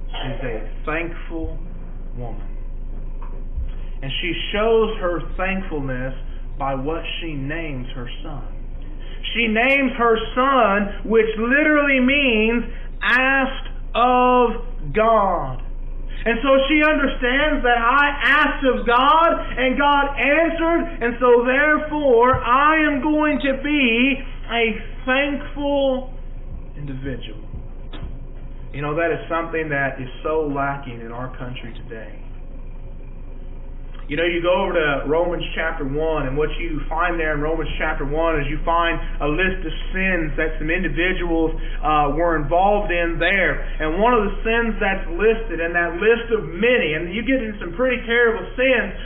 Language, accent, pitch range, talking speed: English, American, 155-245 Hz, 140 wpm